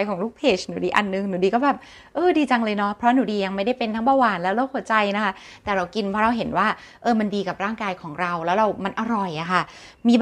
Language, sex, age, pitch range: Thai, female, 20-39, 185-235 Hz